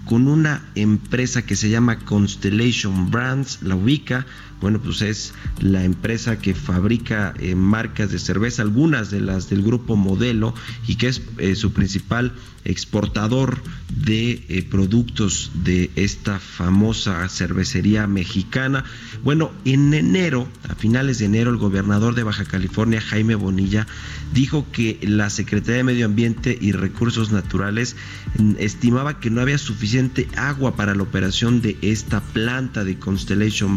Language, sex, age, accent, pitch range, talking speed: Spanish, male, 40-59, Mexican, 100-125 Hz, 140 wpm